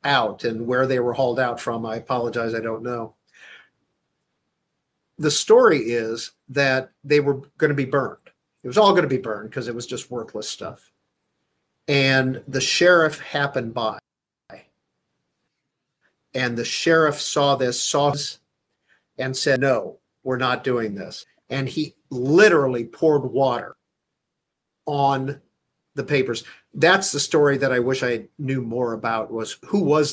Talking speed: 150 wpm